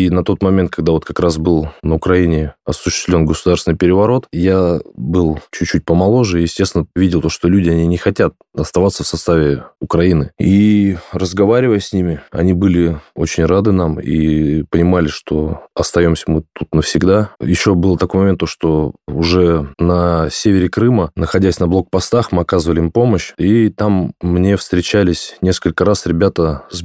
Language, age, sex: Russian, 20-39, male